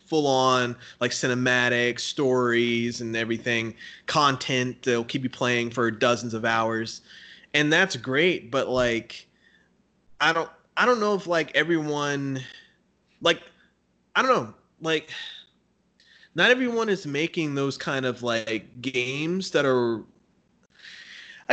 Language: English